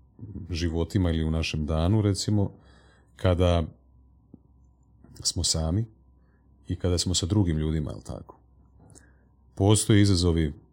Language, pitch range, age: Croatian, 80-100 Hz, 30-49